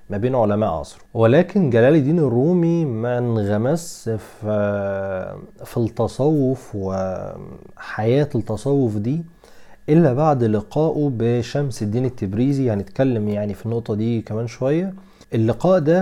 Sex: male